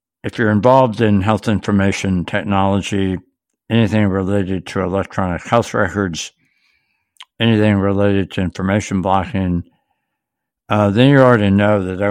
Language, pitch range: English, 90-105 Hz